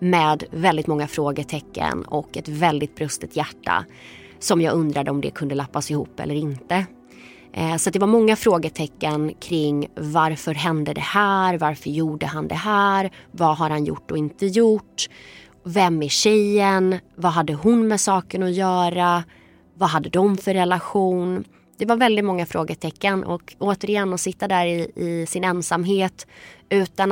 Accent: native